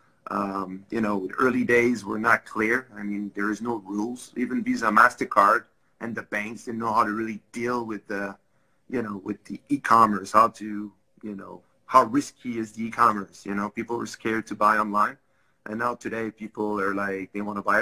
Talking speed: 200 wpm